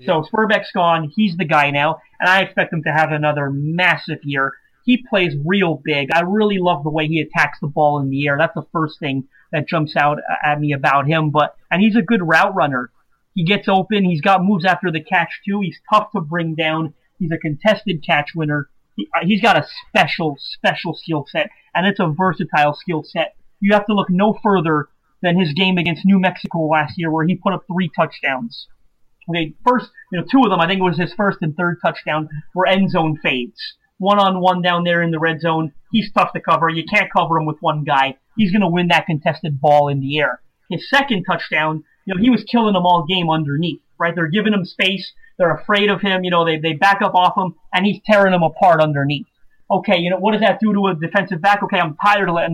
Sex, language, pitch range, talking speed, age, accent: male, English, 155-200 Hz, 230 wpm, 30-49, American